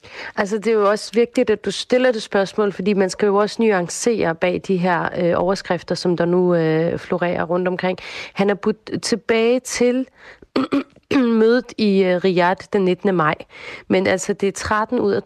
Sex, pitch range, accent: female, 175-210 Hz, native